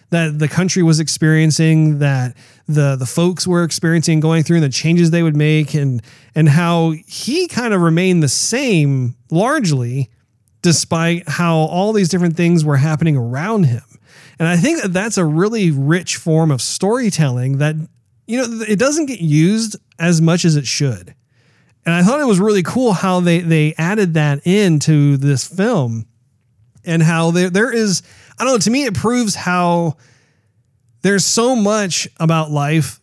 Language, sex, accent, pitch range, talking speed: English, male, American, 145-175 Hz, 175 wpm